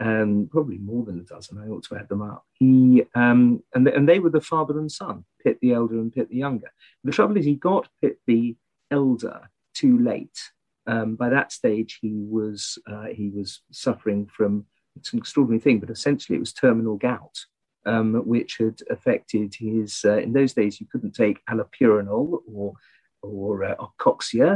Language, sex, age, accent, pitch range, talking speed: English, male, 40-59, British, 105-140 Hz, 195 wpm